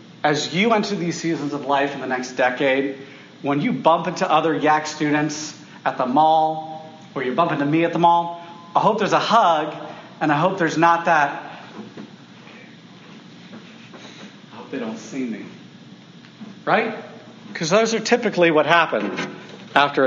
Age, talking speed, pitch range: 40-59, 160 wpm, 150-200 Hz